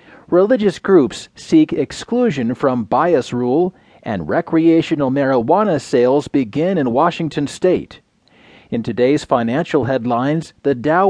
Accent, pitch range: American, 130-170 Hz